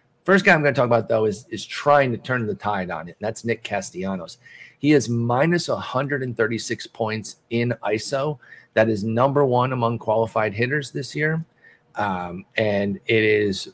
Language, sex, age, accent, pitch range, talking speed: English, male, 40-59, American, 110-145 Hz, 180 wpm